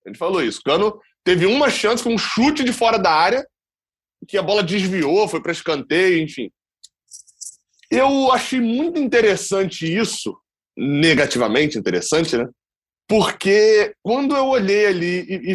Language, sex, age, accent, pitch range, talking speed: Portuguese, male, 20-39, Brazilian, 175-220 Hz, 145 wpm